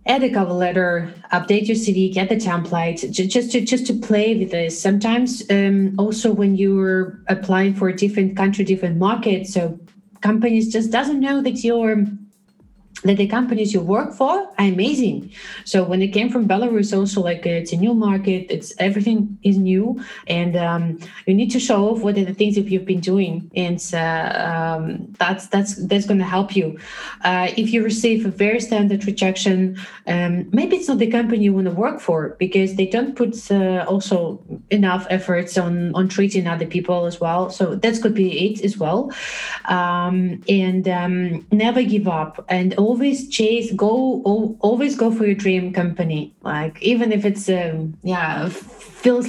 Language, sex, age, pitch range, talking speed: English, female, 20-39, 185-220 Hz, 185 wpm